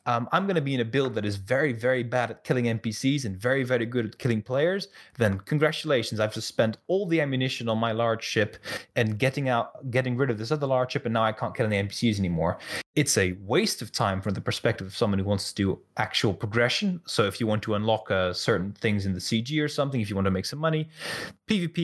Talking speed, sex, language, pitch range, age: 250 wpm, male, English, 105-145 Hz, 20-39